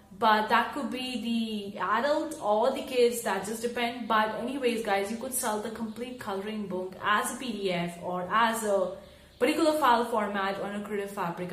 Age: 30-49